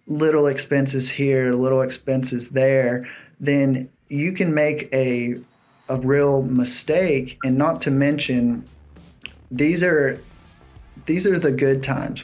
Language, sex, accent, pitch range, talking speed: English, male, American, 120-140 Hz, 125 wpm